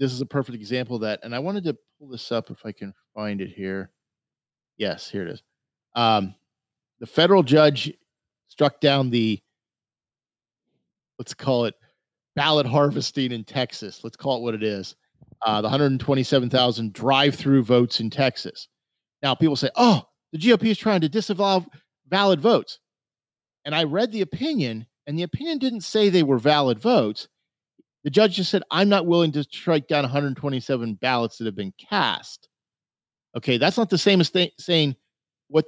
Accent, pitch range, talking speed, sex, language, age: American, 125-180 Hz, 170 wpm, male, English, 40-59